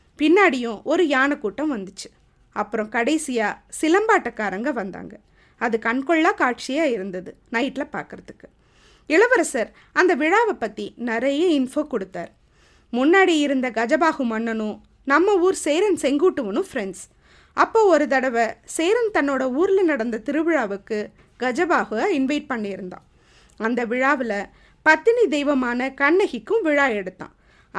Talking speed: 105 wpm